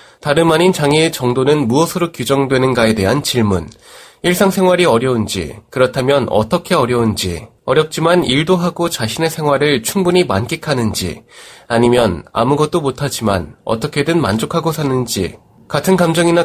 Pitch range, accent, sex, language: 115-165 Hz, native, male, Korean